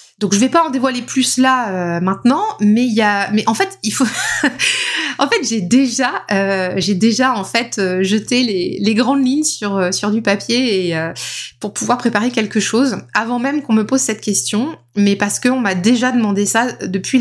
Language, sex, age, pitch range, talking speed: French, female, 20-39, 205-255 Hz, 205 wpm